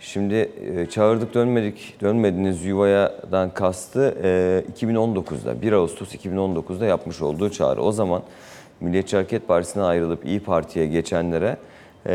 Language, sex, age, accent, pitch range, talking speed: Turkish, male, 40-59, native, 85-105 Hz, 110 wpm